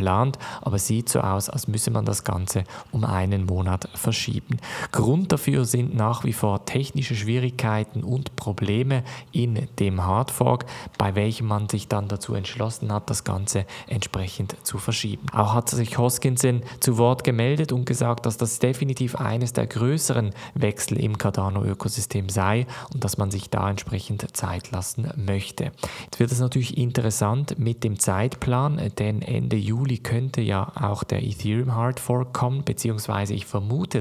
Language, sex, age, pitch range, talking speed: German, male, 20-39, 105-125 Hz, 155 wpm